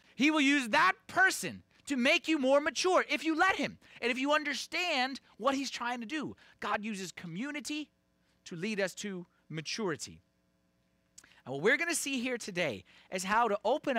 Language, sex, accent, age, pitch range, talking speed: English, male, American, 30-49, 195-275 Hz, 185 wpm